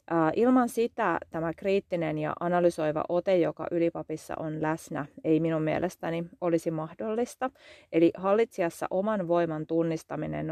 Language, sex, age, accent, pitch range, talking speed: Finnish, female, 30-49, native, 155-195 Hz, 120 wpm